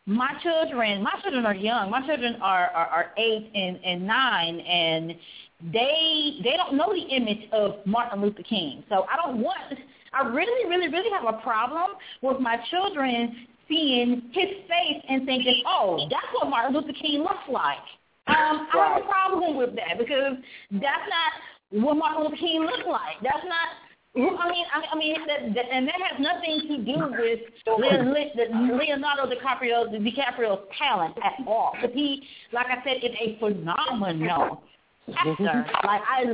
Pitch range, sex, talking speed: 215-305 Hz, female, 165 wpm